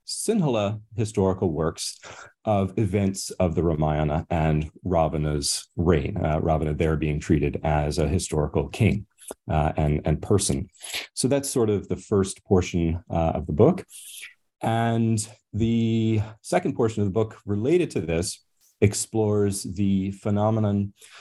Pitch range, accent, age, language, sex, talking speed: 80-105 Hz, American, 30-49, English, male, 135 wpm